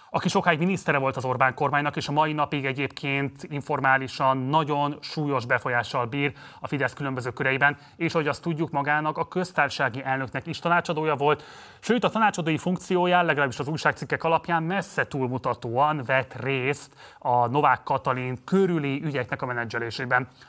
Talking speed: 150 wpm